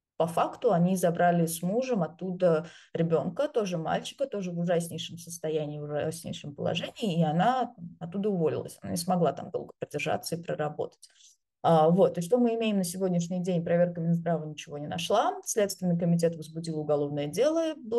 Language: Russian